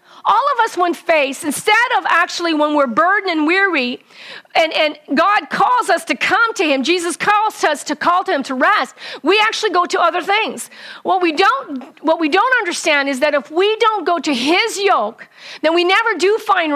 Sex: female